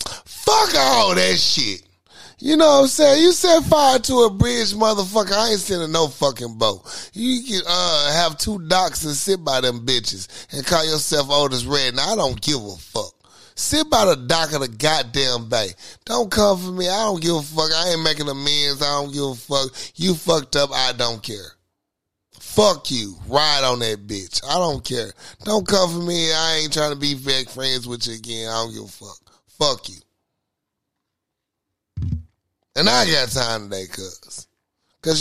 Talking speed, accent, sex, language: 195 wpm, American, male, English